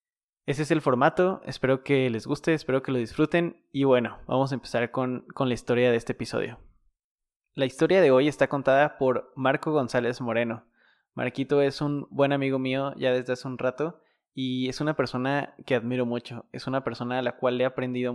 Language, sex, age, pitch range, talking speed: Spanish, male, 20-39, 120-145 Hz, 200 wpm